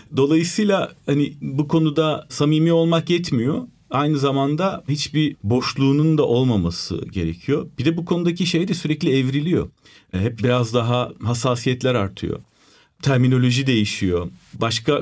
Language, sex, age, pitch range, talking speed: Turkish, male, 40-59, 110-150 Hz, 125 wpm